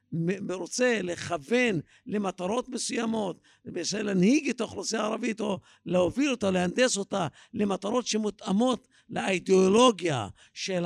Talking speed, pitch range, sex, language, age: 105 wpm, 185-235 Hz, male, Hebrew, 50-69